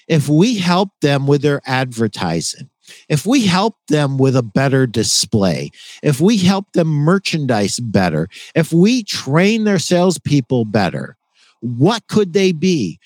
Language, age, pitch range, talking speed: English, 50-69, 130-185 Hz, 140 wpm